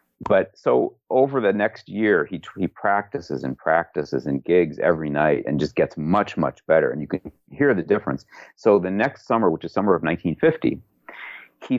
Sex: male